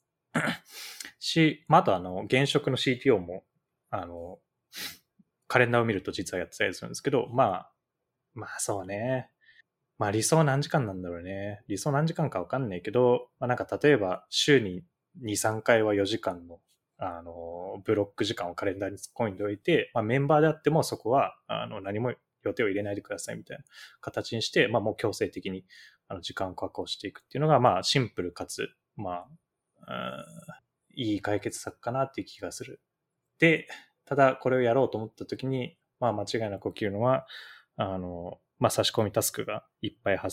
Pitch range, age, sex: 100-140 Hz, 20-39, male